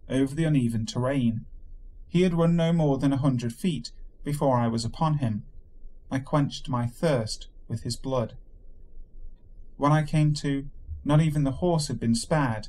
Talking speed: 170 wpm